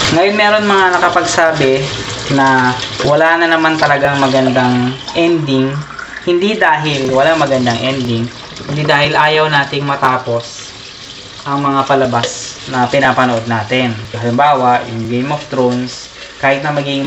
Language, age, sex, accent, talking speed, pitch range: Filipino, 20-39, female, native, 125 wpm, 125-145 Hz